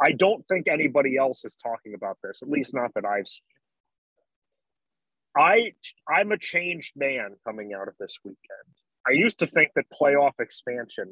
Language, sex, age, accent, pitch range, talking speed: English, male, 30-49, American, 125-165 Hz, 165 wpm